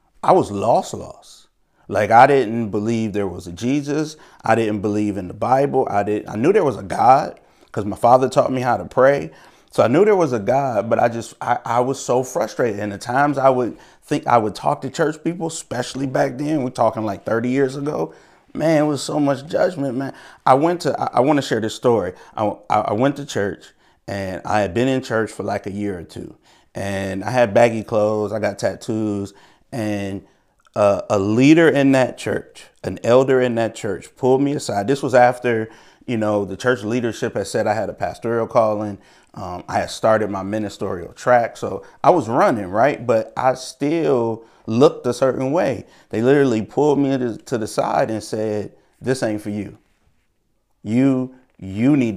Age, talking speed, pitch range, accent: 30-49, 205 wpm, 105-130 Hz, American